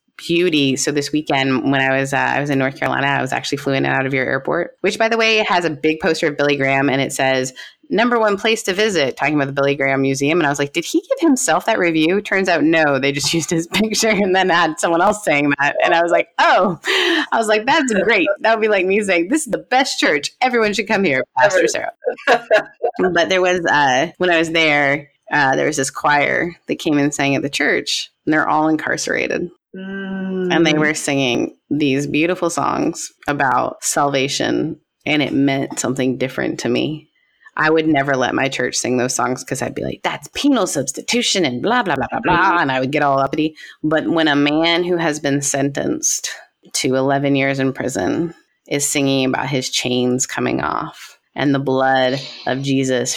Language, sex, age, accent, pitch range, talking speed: English, female, 20-39, American, 135-185 Hz, 220 wpm